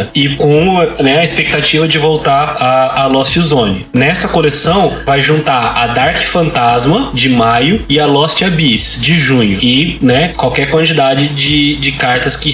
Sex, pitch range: male, 135-165 Hz